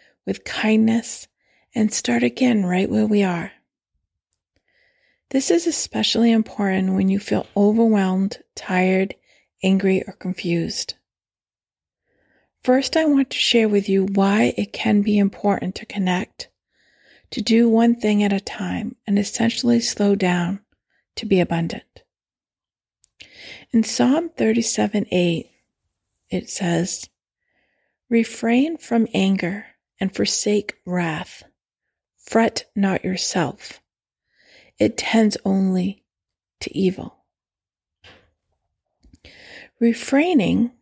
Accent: American